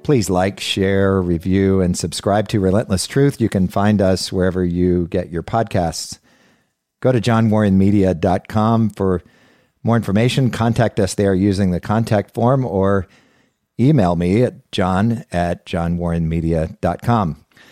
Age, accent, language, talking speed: 50-69, American, English, 130 wpm